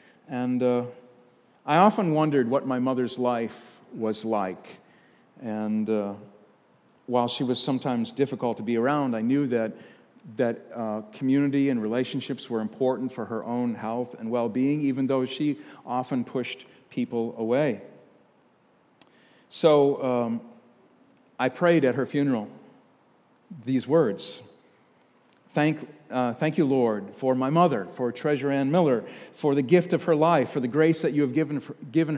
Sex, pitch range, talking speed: male, 120-155 Hz, 145 wpm